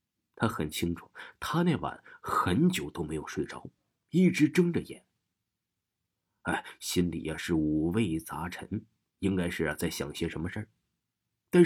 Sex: male